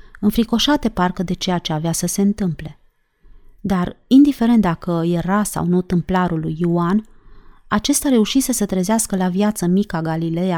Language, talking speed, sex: Romanian, 145 wpm, female